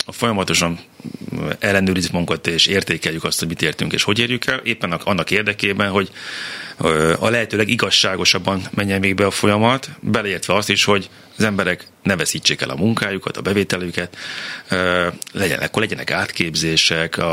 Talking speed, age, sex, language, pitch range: 145 wpm, 30-49, male, Hungarian, 90-120 Hz